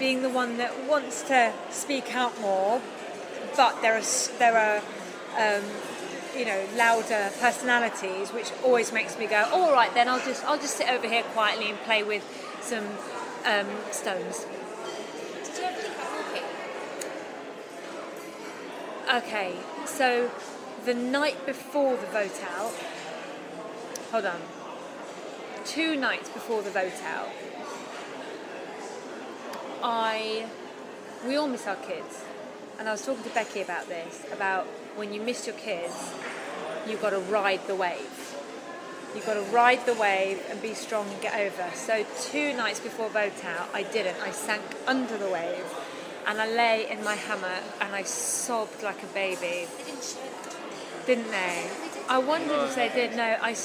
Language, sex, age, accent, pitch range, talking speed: English, female, 30-49, British, 200-250 Hz, 145 wpm